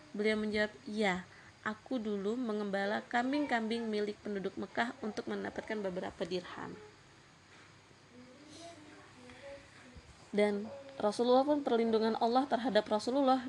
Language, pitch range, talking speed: Indonesian, 200-240 Hz, 95 wpm